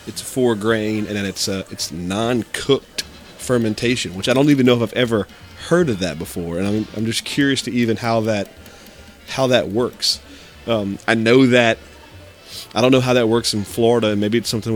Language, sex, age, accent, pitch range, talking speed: English, male, 30-49, American, 100-115 Hz, 205 wpm